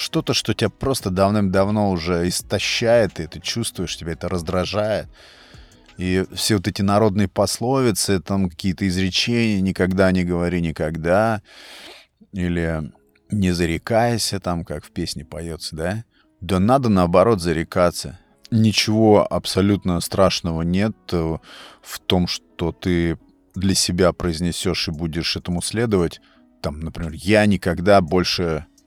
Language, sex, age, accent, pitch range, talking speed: Russian, male, 30-49, native, 85-105 Hz, 125 wpm